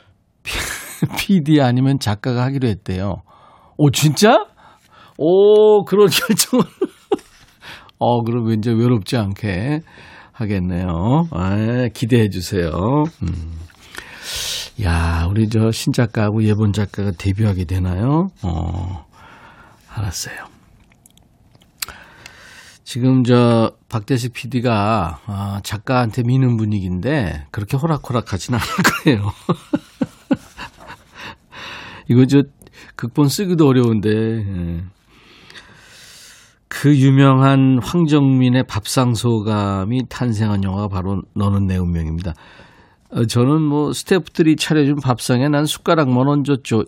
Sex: male